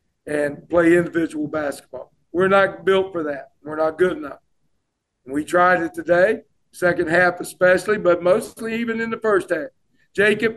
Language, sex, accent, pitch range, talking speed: English, male, American, 180-210 Hz, 160 wpm